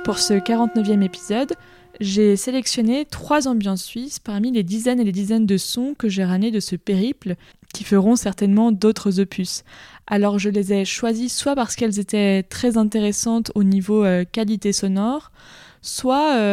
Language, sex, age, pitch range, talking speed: French, female, 20-39, 200-245 Hz, 160 wpm